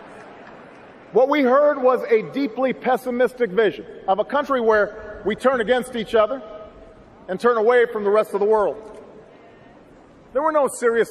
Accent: American